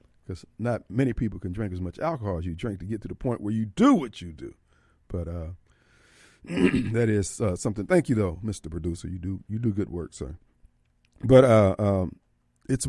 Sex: male